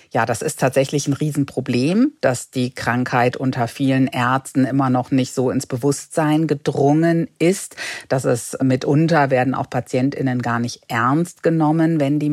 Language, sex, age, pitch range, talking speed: German, female, 50-69, 130-145 Hz, 155 wpm